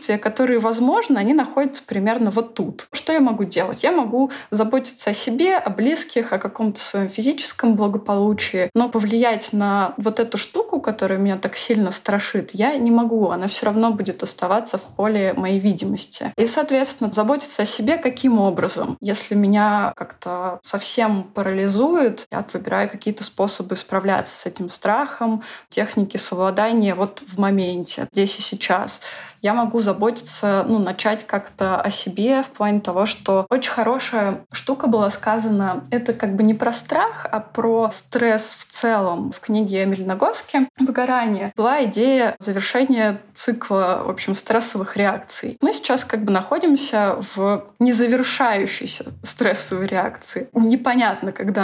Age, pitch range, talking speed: 20-39, 200-240 Hz, 145 wpm